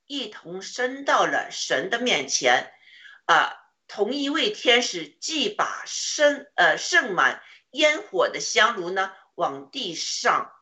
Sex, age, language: female, 50-69, Chinese